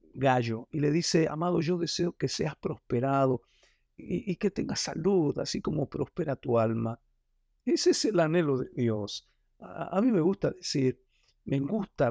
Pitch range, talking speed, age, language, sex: 130-175 Hz, 170 wpm, 50-69, Spanish, male